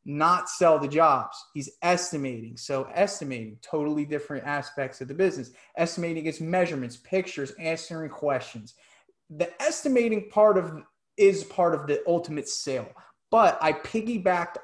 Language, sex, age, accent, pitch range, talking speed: English, male, 30-49, American, 140-185 Hz, 135 wpm